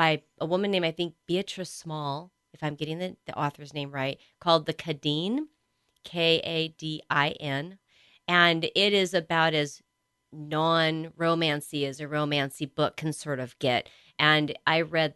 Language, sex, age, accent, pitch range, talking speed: English, female, 30-49, American, 145-180 Hz, 145 wpm